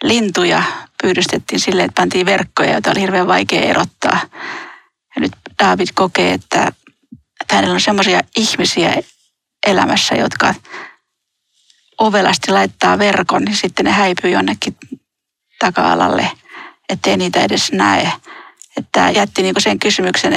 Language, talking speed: Finnish, 115 wpm